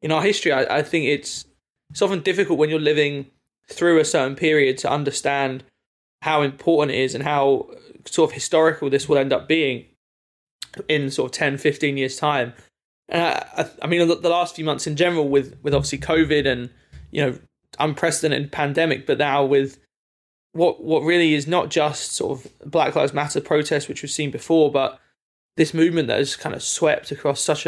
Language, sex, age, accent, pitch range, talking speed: English, male, 20-39, British, 140-160 Hz, 195 wpm